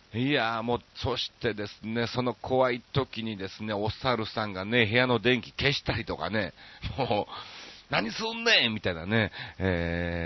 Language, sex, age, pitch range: Japanese, male, 40-59, 95-125 Hz